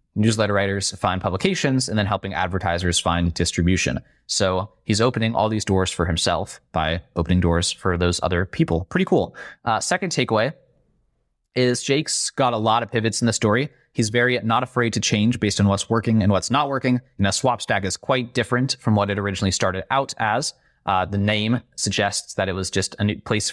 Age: 20-39